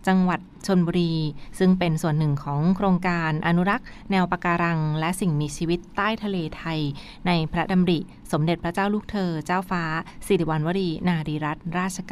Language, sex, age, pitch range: Thai, female, 20-39, 165-195 Hz